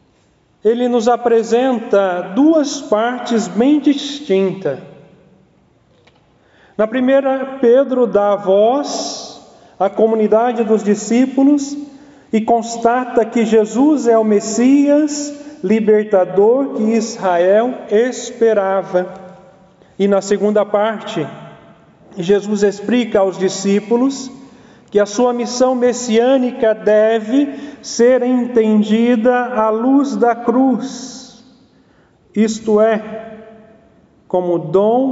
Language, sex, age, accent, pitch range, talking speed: Portuguese, male, 40-59, Brazilian, 195-245 Hz, 90 wpm